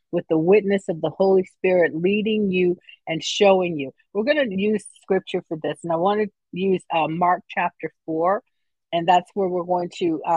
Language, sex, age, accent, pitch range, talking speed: English, female, 50-69, American, 170-200 Hz, 195 wpm